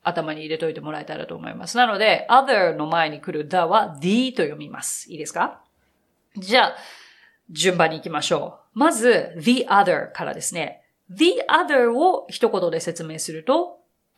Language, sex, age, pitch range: Japanese, female, 40-59, 165-265 Hz